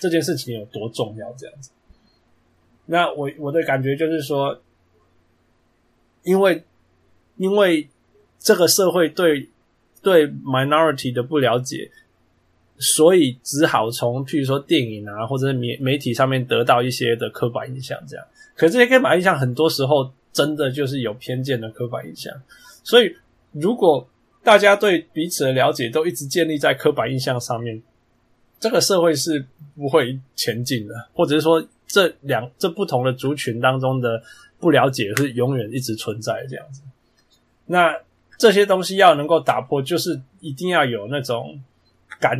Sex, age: male, 20-39